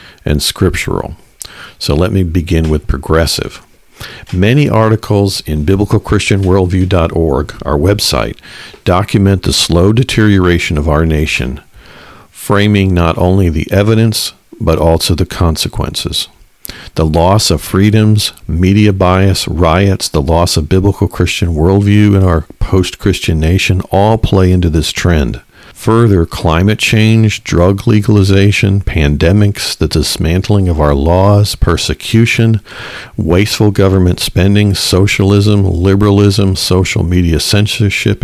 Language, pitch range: English, 85-105 Hz